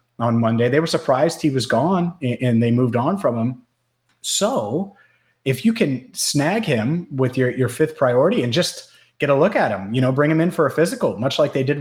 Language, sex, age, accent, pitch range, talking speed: English, male, 30-49, American, 115-135 Hz, 225 wpm